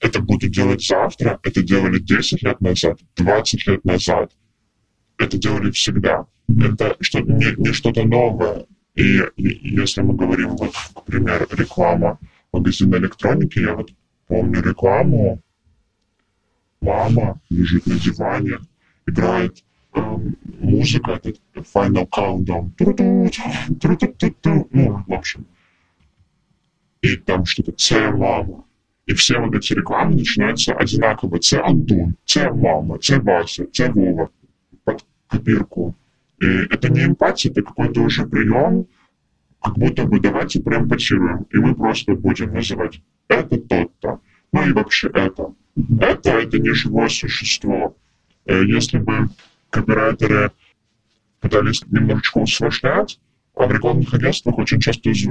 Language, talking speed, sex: Ukrainian, 120 wpm, female